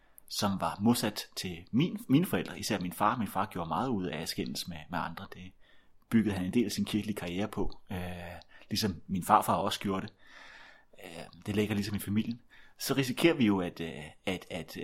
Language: Danish